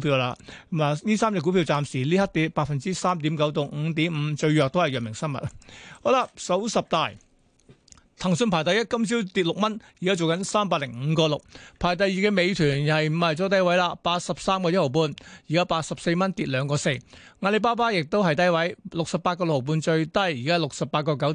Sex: male